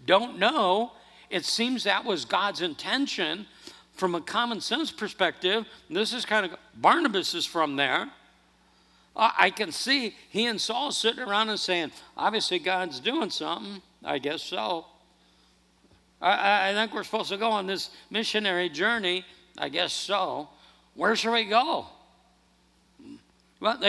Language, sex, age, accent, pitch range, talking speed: English, male, 60-79, American, 180-235 Hz, 150 wpm